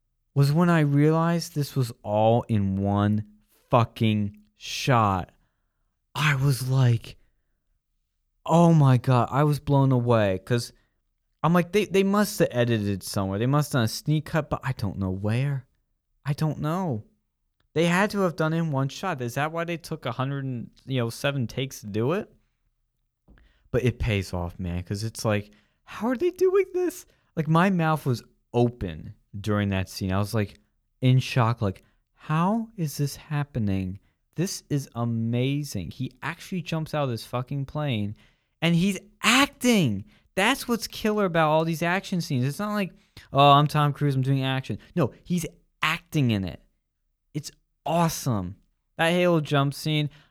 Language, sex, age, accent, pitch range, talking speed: English, male, 20-39, American, 110-165 Hz, 165 wpm